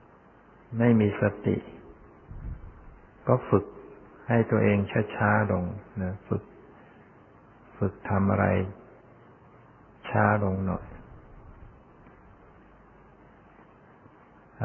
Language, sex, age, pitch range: Thai, male, 60-79, 100-115 Hz